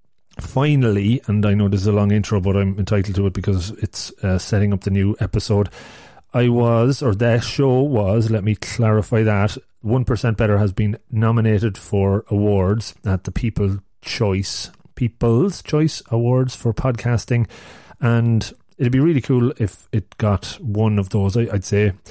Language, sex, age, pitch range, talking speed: English, male, 30-49, 100-115 Hz, 170 wpm